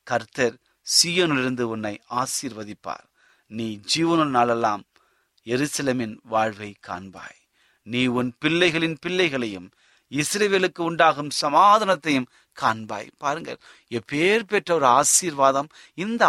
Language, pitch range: Tamil, 125-175 Hz